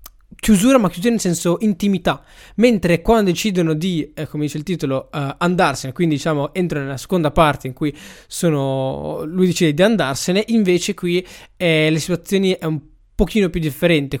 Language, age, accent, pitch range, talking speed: Italian, 20-39, native, 145-180 Hz, 170 wpm